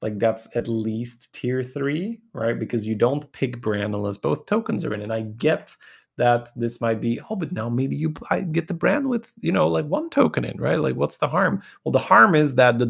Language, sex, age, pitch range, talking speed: English, male, 30-49, 110-155 Hz, 235 wpm